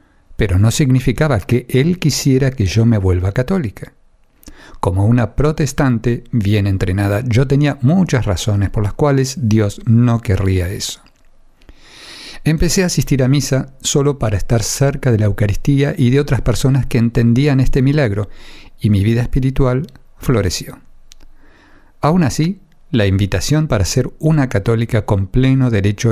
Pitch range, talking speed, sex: 100-135 Hz, 145 wpm, male